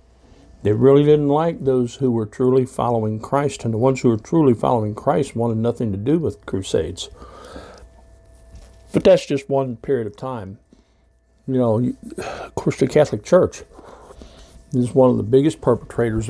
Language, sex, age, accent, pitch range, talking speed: English, male, 60-79, American, 95-130 Hz, 170 wpm